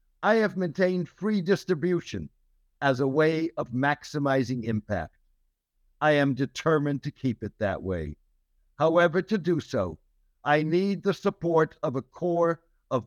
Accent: American